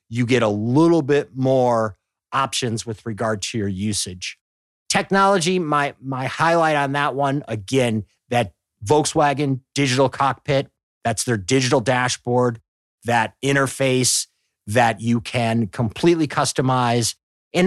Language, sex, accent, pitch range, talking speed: English, male, American, 115-145 Hz, 120 wpm